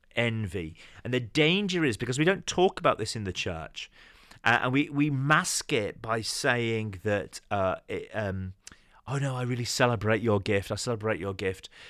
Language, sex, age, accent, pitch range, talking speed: English, male, 30-49, British, 95-135 Hz, 185 wpm